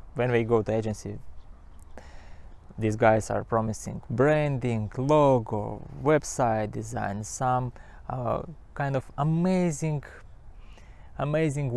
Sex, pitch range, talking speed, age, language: male, 105-135 Hz, 95 wpm, 20-39, English